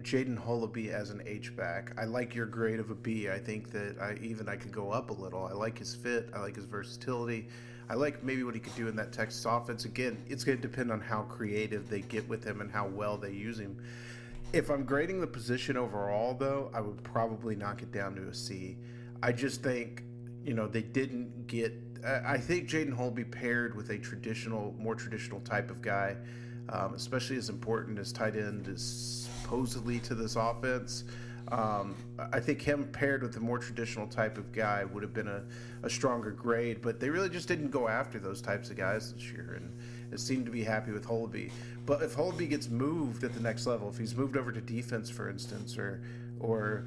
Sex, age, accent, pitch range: male, 30-49, American, 110-120 Hz